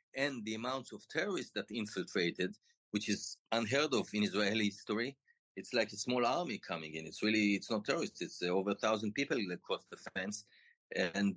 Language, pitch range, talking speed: English, 100-125 Hz, 185 wpm